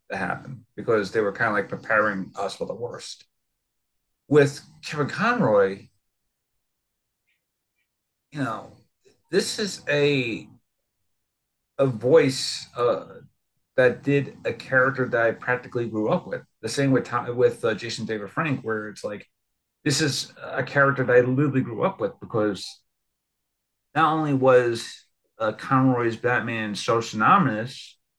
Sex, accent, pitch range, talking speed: male, American, 115-140 Hz, 140 wpm